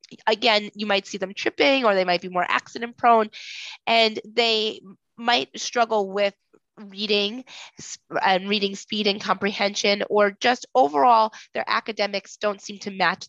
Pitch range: 185-225 Hz